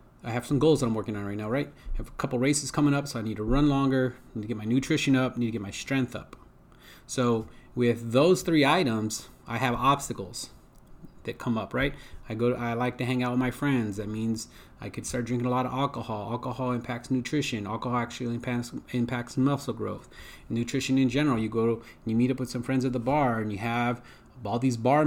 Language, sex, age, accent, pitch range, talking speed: English, male, 30-49, American, 115-140 Hz, 240 wpm